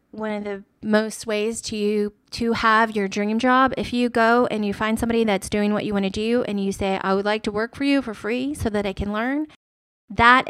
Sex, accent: female, American